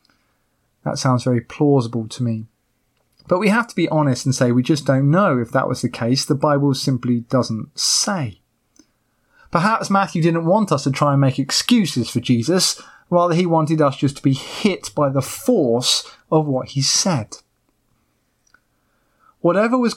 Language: English